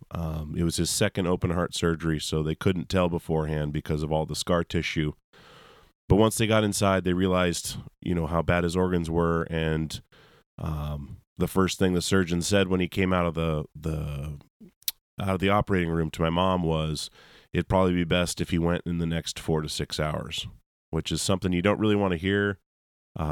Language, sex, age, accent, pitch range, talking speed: English, male, 30-49, American, 80-95 Hz, 210 wpm